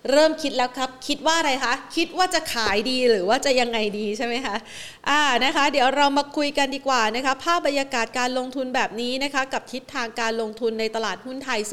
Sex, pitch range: female, 205-250 Hz